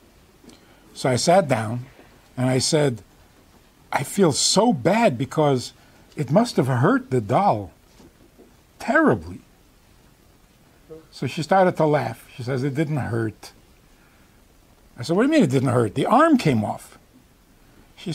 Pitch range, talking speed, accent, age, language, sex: 125-185 Hz, 140 wpm, American, 60-79, English, male